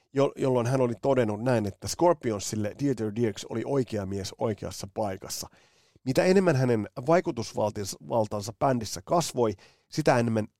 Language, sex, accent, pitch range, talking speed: Finnish, male, native, 105-135 Hz, 125 wpm